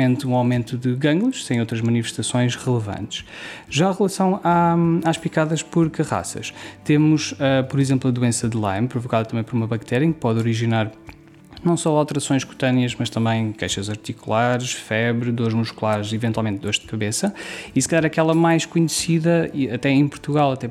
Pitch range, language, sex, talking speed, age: 120-145 Hz, Portuguese, male, 170 wpm, 20-39